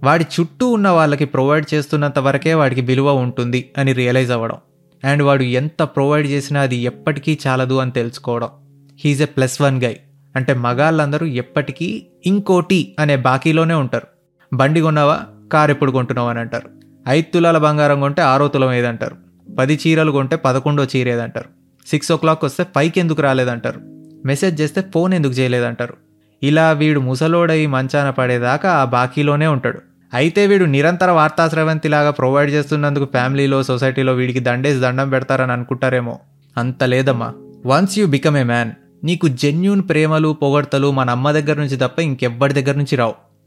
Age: 20-39